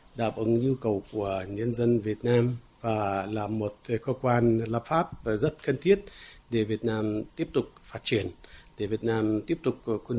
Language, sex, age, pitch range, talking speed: Vietnamese, male, 60-79, 110-125 Hz, 190 wpm